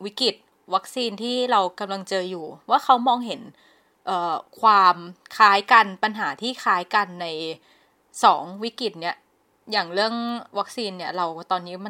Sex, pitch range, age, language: female, 185-230 Hz, 20-39, Thai